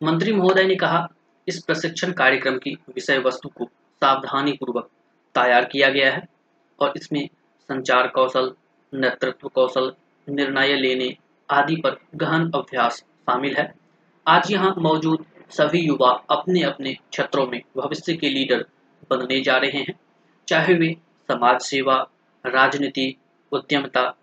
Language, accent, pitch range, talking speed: Hindi, native, 130-170 Hz, 130 wpm